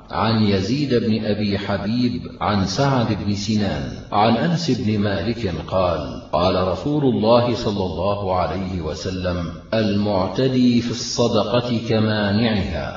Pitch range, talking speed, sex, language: 110-130 Hz, 115 wpm, male, Arabic